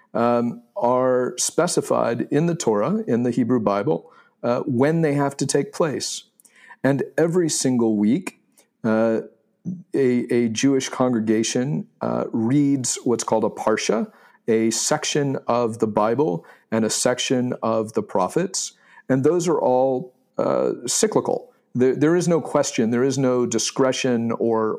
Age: 50-69